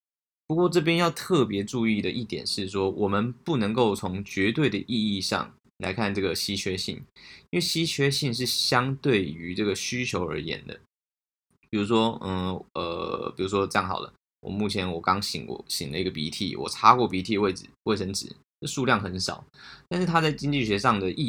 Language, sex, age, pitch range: Chinese, male, 20-39, 95-115 Hz